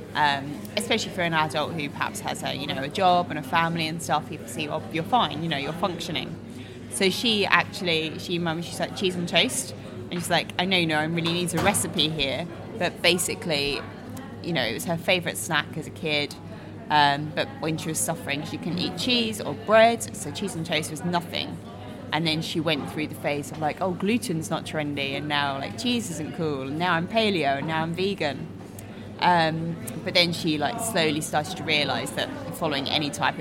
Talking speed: 210 wpm